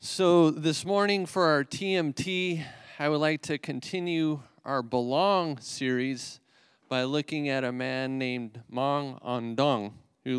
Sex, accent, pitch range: male, American, 130-165 Hz